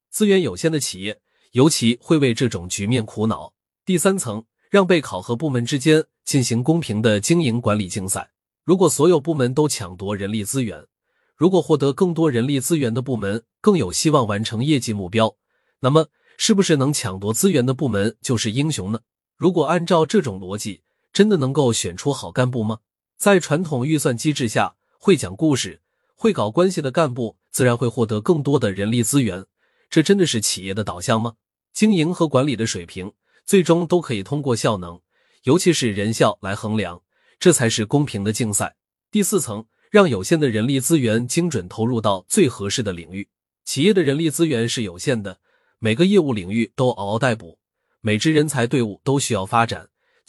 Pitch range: 110-160 Hz